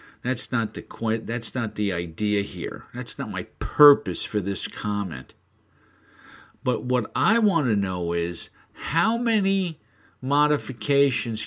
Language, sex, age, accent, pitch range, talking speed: English, male, 50-69, American, 105-145 Hz, 135 wpm